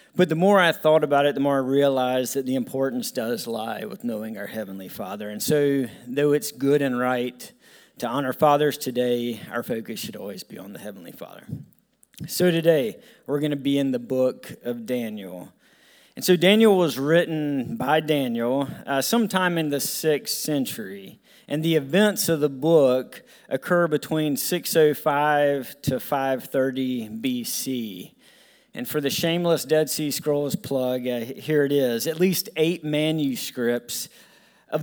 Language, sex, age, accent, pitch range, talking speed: English, male, 40-59, American, 130-165 Hz, 160 wpm